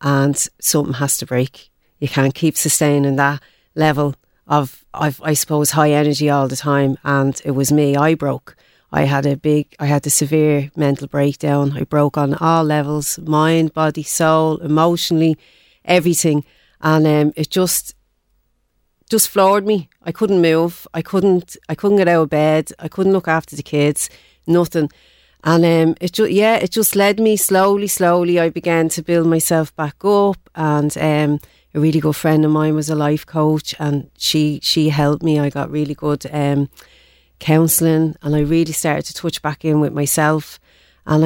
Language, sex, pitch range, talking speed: English, female, 145-170 Hz, 180 wpm